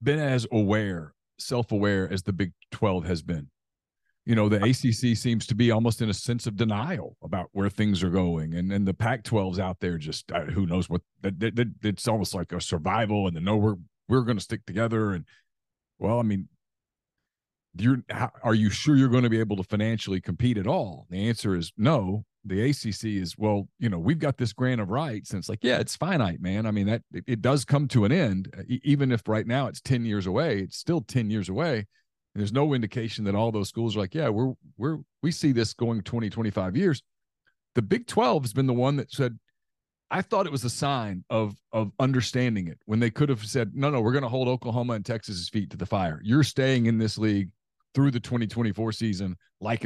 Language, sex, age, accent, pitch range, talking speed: English, male, 40-59, American, 100-125 Hz, 225 wpm